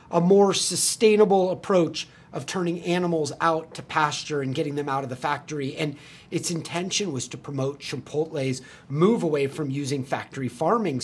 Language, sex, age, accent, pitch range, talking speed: English, male, 30-49, American, 140-175 Hz, 165 wpm